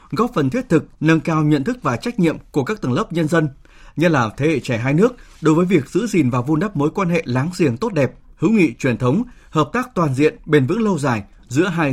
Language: Vietnamese